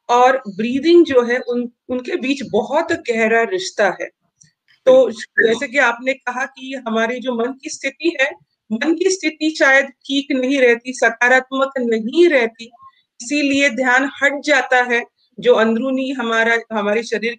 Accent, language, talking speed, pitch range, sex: Indian, English, 150 wpm, 230-285 Hz, female